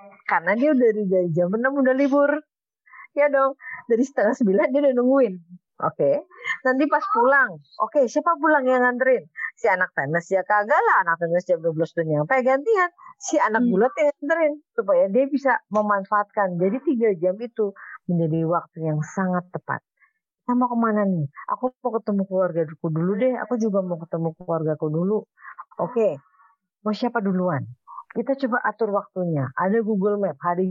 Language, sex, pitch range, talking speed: Indonesian, female, 185-265 Hz, 170 wpm